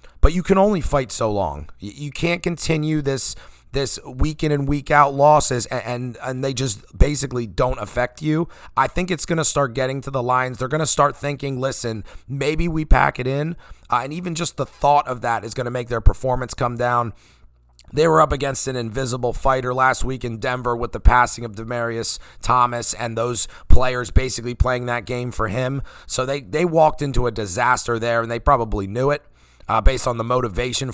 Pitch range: 115-145 Hz